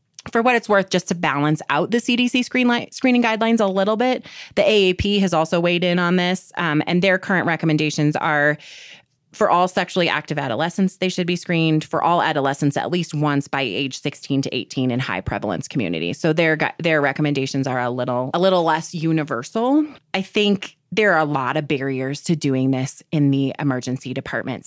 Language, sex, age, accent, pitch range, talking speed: English, female, 30-49, American, 140-185 Hz, 200 wpm